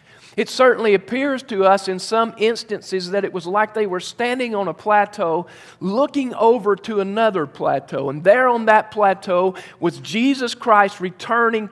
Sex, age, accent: male, 40-59, American